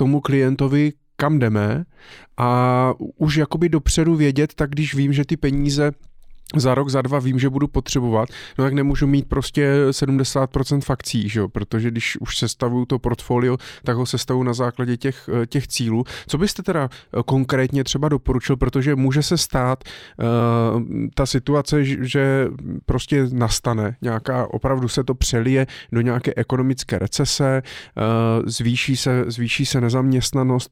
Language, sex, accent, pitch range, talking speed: Czech, male, native, 120-140 Hz, 150 wpm